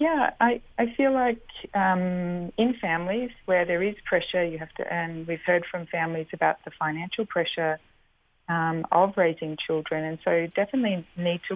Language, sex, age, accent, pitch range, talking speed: English, female, 30-49, Australian, 160-195 Hz, 170 wpm